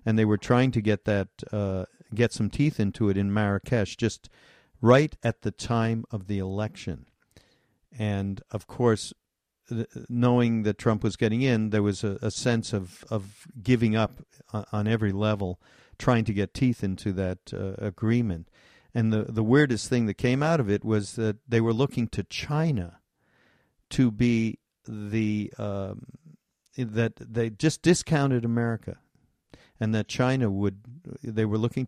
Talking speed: 160 wpm